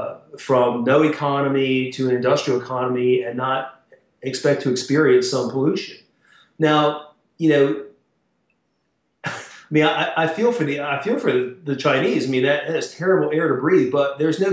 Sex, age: male, 40-59